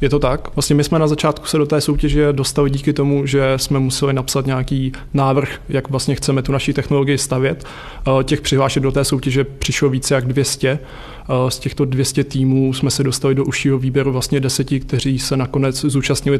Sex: male